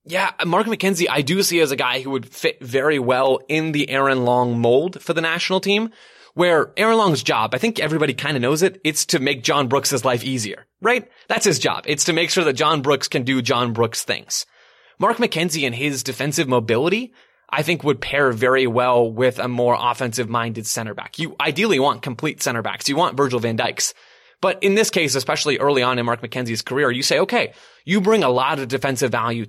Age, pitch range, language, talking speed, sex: 20-39, 125-165 Hz, English, 220 wpm, male